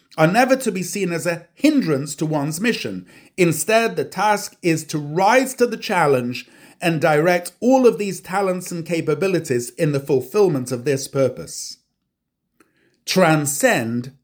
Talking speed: 150 wpm